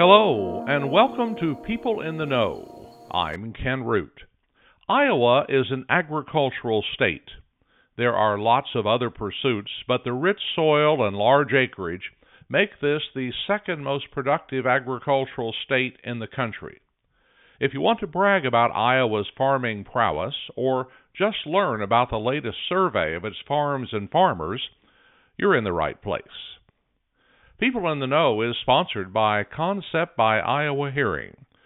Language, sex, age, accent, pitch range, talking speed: English, male, 60-79, American, 115-155 Hz, 145 wpm